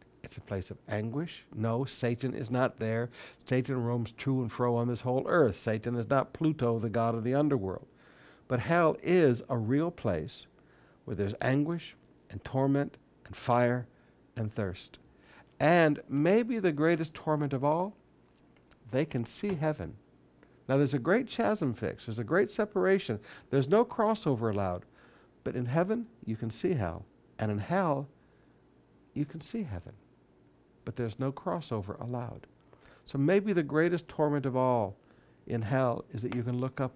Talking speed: 165 wpm